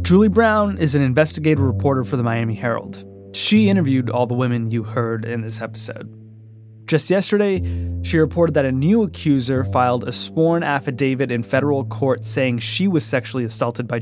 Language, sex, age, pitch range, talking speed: English, male, 20-39, 110-150 Hz, 175 wpm